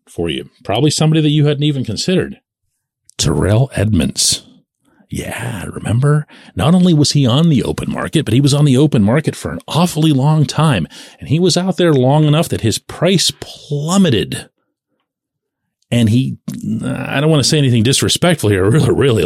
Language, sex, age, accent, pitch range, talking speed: English, male, 40-59, American, 105-155 Hz, 180 wpm